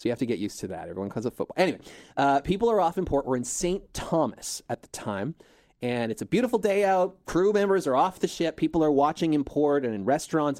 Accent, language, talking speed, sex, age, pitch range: American, English, 260 wpm, male, 30-49, 120-160 Hz